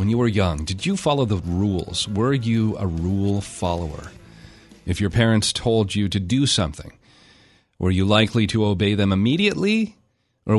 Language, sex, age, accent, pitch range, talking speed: English, male, 40-59, American, 95-120 Hz, 170 wpm